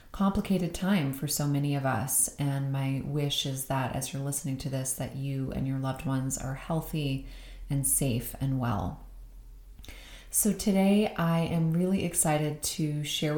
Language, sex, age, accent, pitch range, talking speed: English, female, 30-49, American, 135-150 Hz, 165 wpm